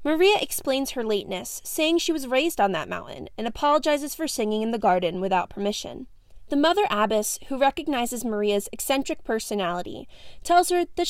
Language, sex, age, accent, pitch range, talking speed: English, female, 20-39, American, 215-320 Hz, 170 wpm